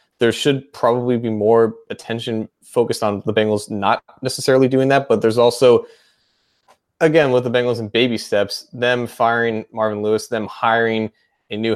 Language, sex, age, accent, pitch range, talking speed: English, male, 20-39, American, 100-115 Hz, 165 wpm